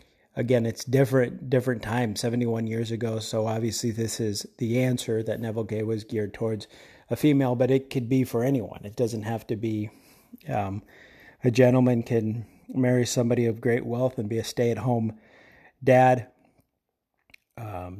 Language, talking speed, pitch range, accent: English, 170 wpm, 115-135 Hz, American